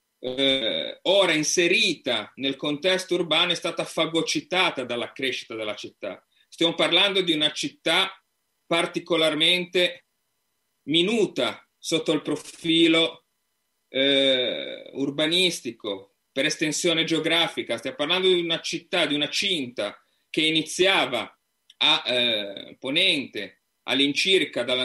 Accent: native